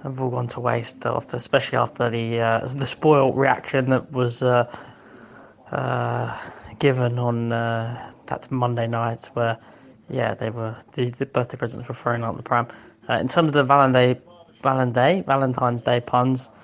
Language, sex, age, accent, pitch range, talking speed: English, male, 10-29, British, 120-135 Hz, 160 wpm